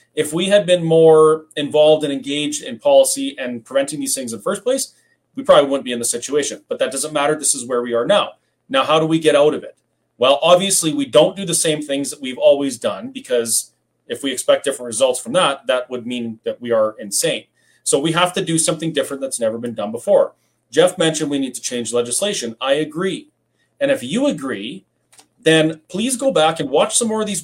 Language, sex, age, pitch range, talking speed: English, male, 30-49, 135-205 Hz, 230 wpm